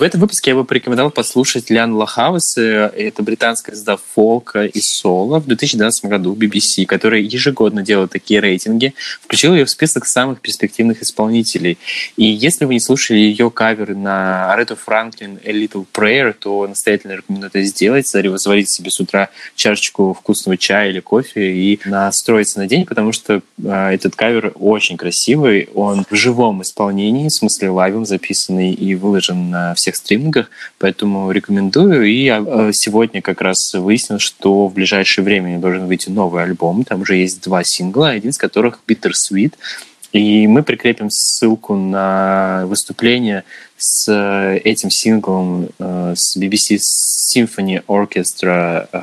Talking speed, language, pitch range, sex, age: 145 wpm, Russian, 95-110 Hz, male, 20-39